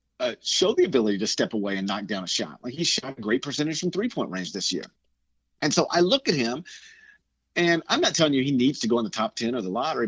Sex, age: male, 40-59